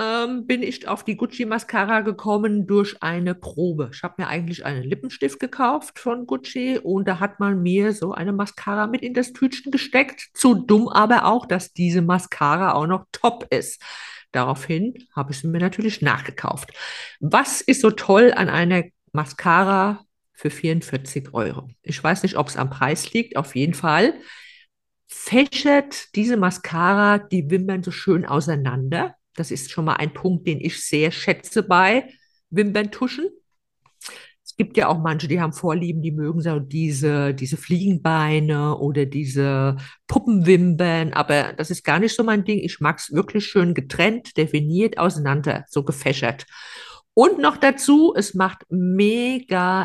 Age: 50-69